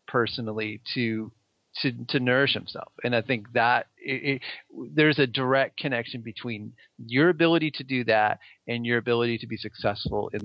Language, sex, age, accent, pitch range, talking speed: English, male, 40-59, American, 115-145 Hz, 165 wpm